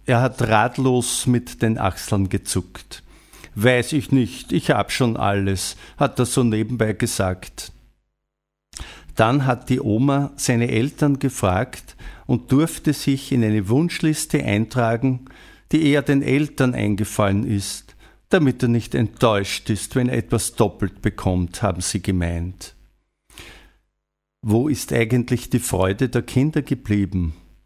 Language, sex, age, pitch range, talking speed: German, male, 50-69, 100-135 Hz, 130 wpm